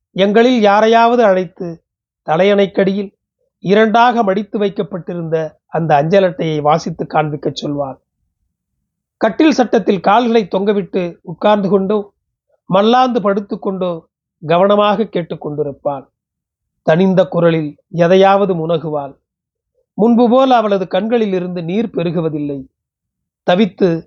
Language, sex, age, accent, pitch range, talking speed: Tamil, male, 30-49, native, 160-215 Hz, 85 wpm